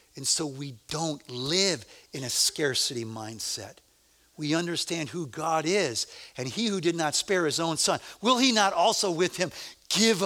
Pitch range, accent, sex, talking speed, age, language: 110-165 Hz, American, male, 175 wpm, 60-79, English